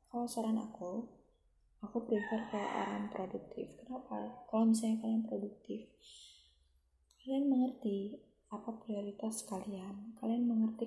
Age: 10-29